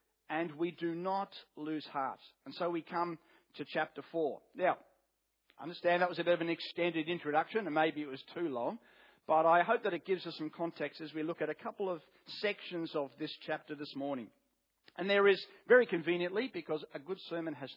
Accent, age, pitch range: Australian, 40-59, 150-185 Hz